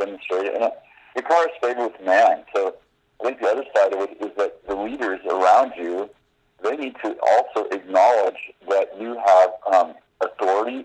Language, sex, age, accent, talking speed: English, male, 50-69, American, 170 wpm